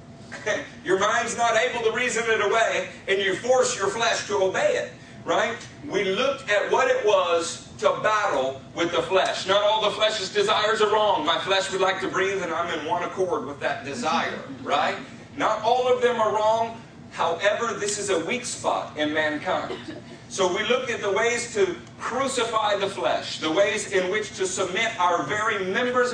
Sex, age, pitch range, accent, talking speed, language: male, 40-59, 185-230 Hz, American, 190 wpm, English